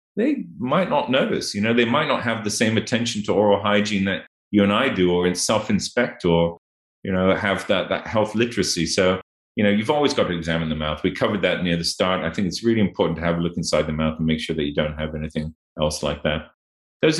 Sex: male